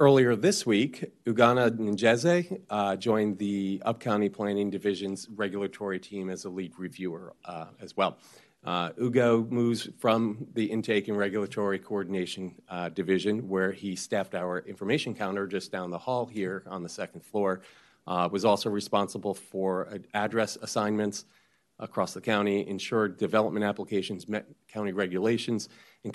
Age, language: 40-59, English